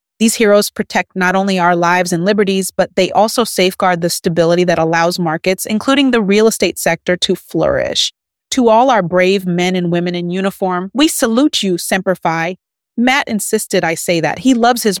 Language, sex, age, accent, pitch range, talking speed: English, female, 30-49, American, 185-265 Hz, 190 wpm